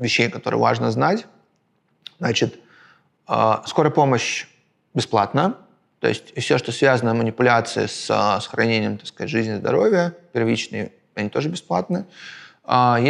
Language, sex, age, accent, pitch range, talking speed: Russian, male, 30-49, native, 110-140 Hz, 125 wpm